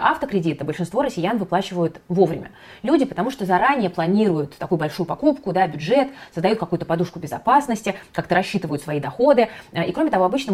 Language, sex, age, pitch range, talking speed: Russian, female, 20-39, 170-220 Hz, 155 wpm